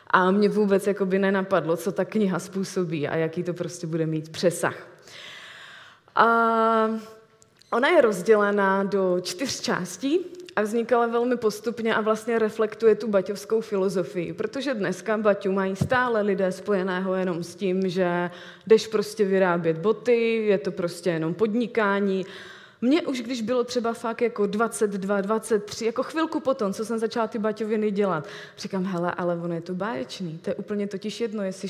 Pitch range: 185-220 Hz